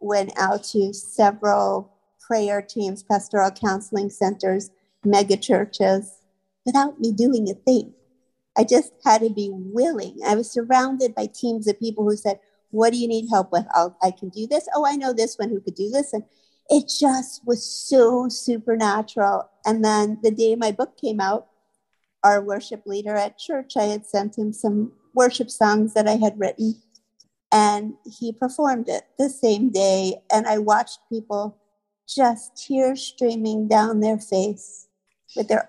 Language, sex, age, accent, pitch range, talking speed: English, female, 50-69, American, 200-230 Hz, 165 wpm